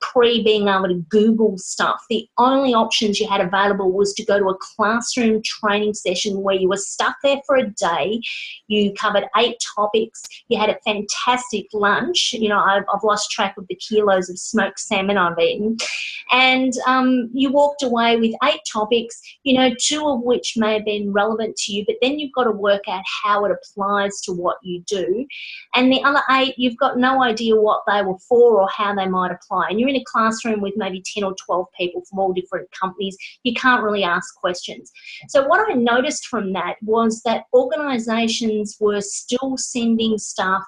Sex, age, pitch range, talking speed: female, 30-49, 200-250 Hz, 200 wpm